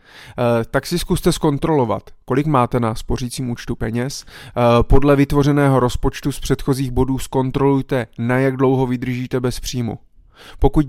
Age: 20-39